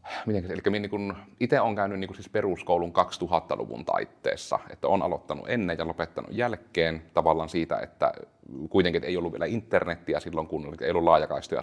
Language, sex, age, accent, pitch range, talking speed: Finnish, male, 30-49, native, 85-95 Hz, 170 wpm